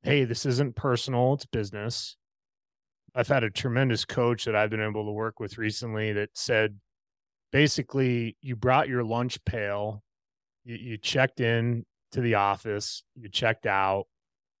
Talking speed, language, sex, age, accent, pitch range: 150 wpm, English, male, 30-49, American, 105-135 Hz